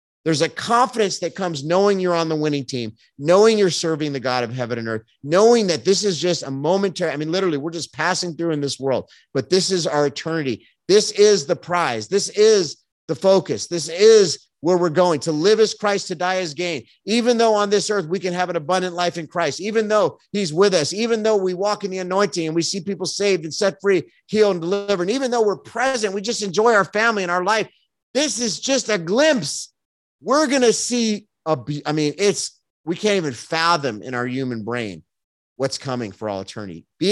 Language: English